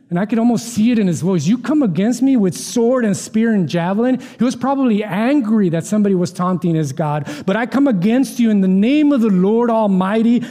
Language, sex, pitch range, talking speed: English, male, 165-225 Hz, 235 wpm